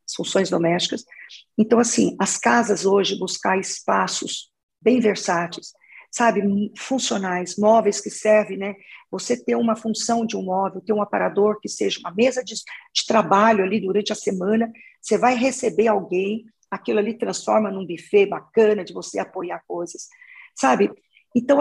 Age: 50-69